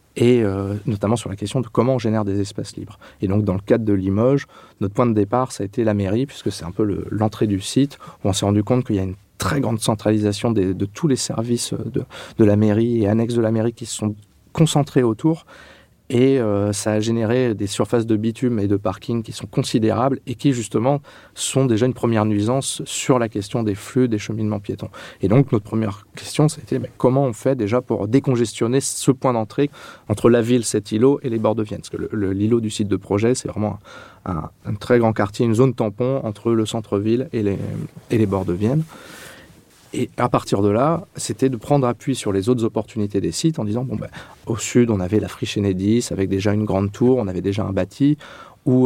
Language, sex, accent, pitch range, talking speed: French, male, French, 100-125 Hz, 230 wpm